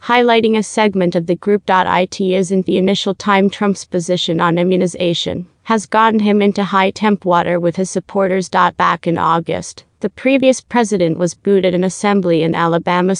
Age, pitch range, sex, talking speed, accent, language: 30-49, 175-205 Hz, female, 165 wpm, American, English